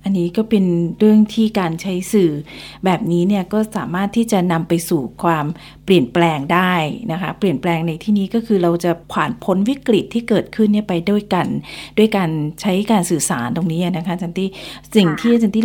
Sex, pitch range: female, 165-200 Hz